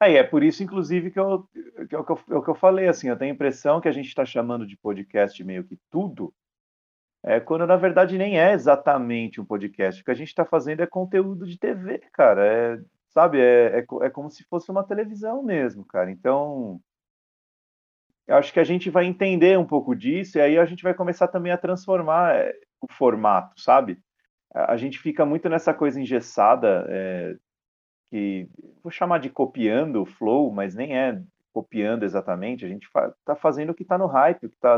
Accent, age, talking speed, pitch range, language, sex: Brazilian, 40-59, 190 wpm, 120-185 Hz, Portuguese, male